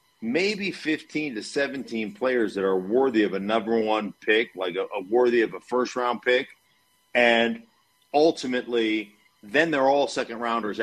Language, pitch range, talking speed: English, 110-145 Hz, 160 wpm